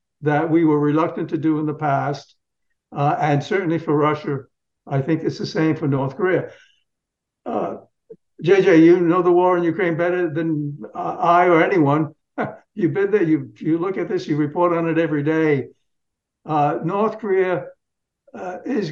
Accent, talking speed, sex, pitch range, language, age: American, 175 wpm, male, 145-185 Hz, English, 60-79